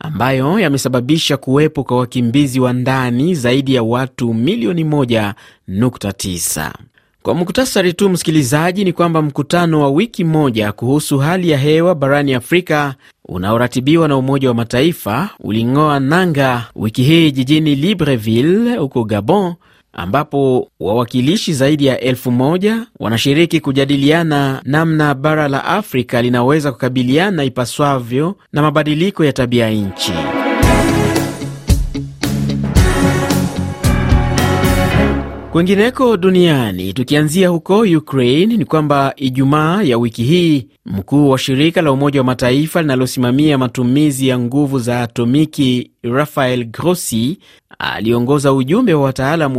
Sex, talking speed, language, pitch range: male, 110 wpm, Swahili, 120-155 Hz